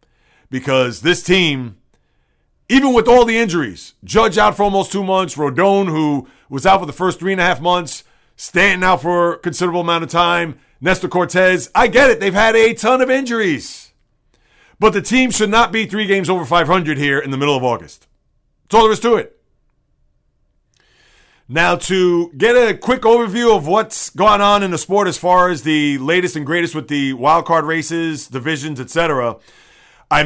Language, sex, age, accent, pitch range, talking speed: English, male, 40-59, American, 160-215 Hz, 190 wpm